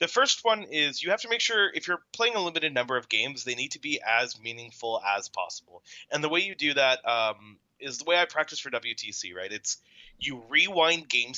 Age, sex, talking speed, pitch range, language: 30-49, male, 230 wpm, 115-165 Hz, English